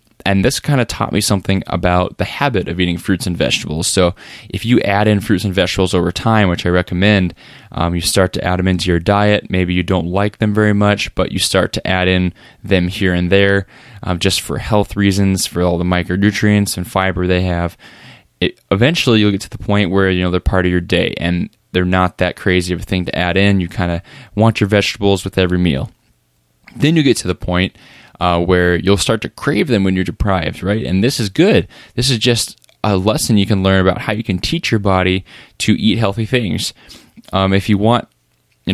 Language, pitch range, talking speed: English, 90-105 Hz, 230 wpm